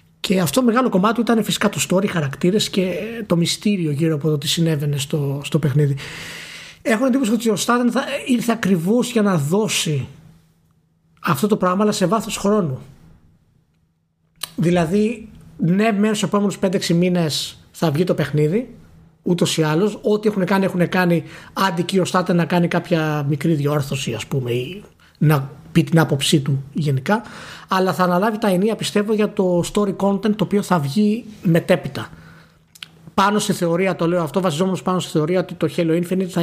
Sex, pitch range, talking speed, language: male, 155-205 Hz, 175 wpm, Greek